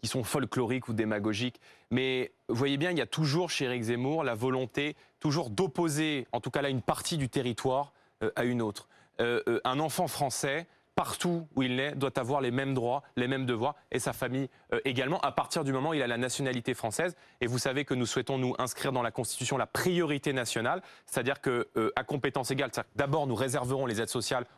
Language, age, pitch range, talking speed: French, 20-39, 130-160 Hz, 220 wpm